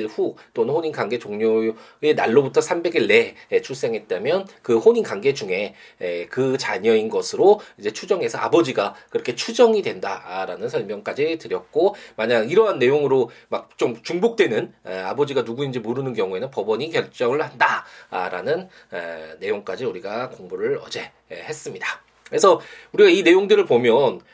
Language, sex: Korean, male